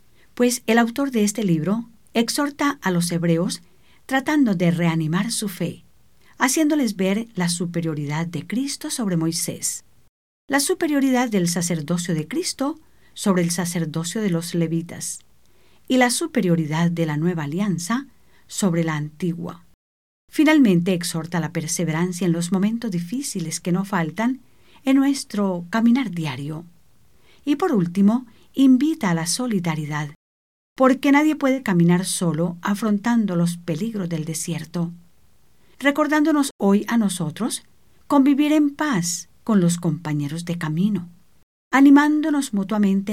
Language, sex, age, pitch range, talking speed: English, female, 50-69, 165-250 Hz, 130 wpm